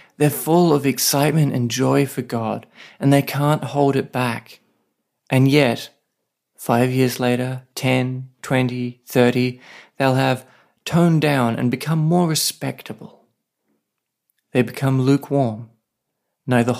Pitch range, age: 120-145 Hz, 40-59